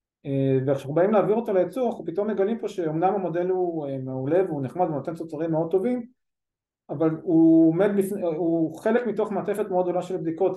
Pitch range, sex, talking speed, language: 145-180 Hz, male, 175 wpm, Hebrew